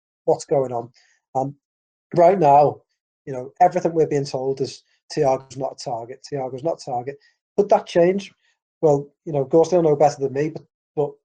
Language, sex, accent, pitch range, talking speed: English, male, British, 135-170 Hz, 185 wpm